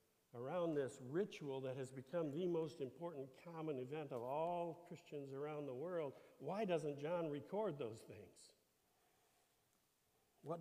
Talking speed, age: 135 wpm, 60-79